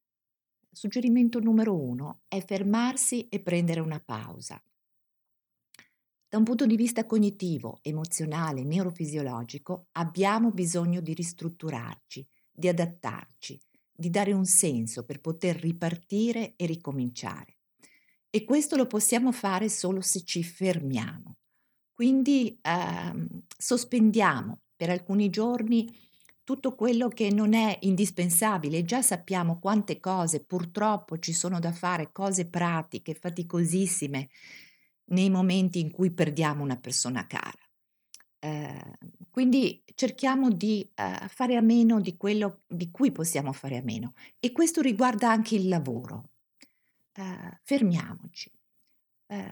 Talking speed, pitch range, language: 120 wpm, 160-220 Hz, Italian